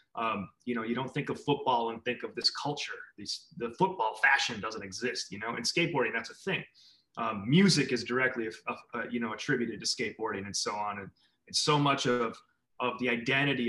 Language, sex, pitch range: English, male, 120-145 Hz